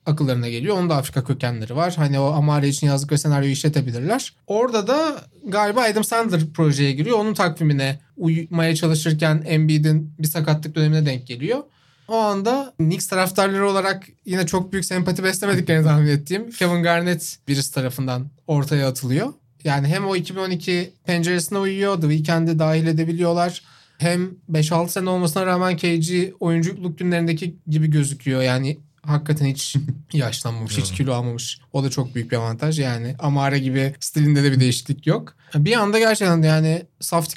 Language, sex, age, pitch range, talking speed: Turkish, male, 30-49, 140-180 Hz, 155 wpm